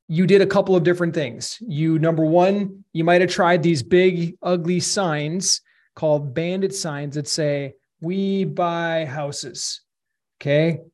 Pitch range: 150-175 Hz